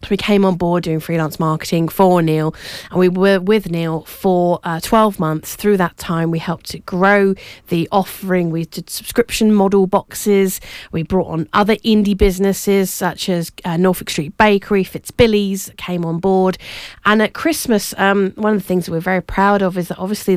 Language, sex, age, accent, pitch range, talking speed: English, female, 30-49, British, 165-205 Hz, 185 wpm